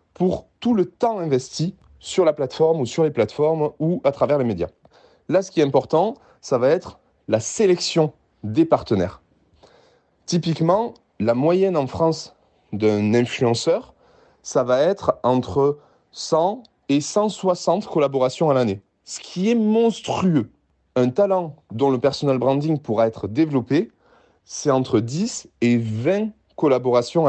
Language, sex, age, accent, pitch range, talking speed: French, male, 30-49, French, 115-170 Hz, 145 wpm